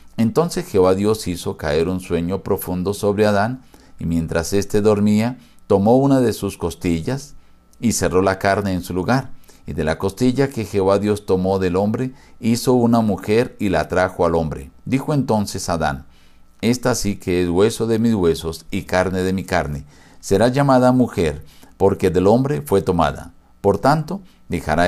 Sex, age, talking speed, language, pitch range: male, 50-69, 170 wpm, Spanish, 90-115 Hz